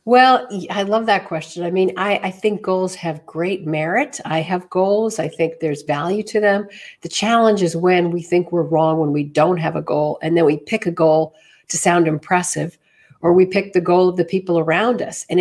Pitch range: 165-205 Hz